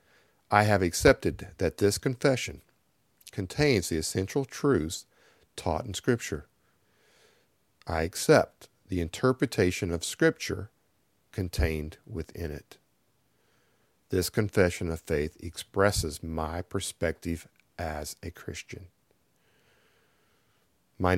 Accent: American